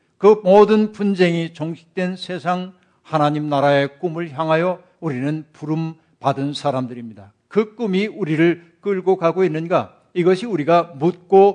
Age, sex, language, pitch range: 60-79, male, Korean, 145-180 Hz